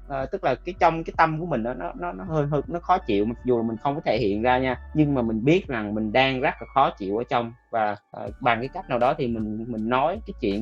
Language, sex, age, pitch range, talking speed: Vietnamese, male, 20-39, 115-145 Hz, 310 wpm